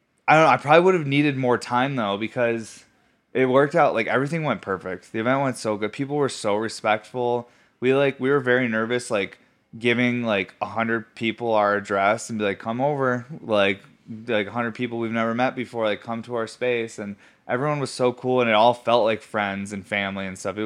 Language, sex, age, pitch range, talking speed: English, male, 20-39, 105-125 Hz, 220 wpm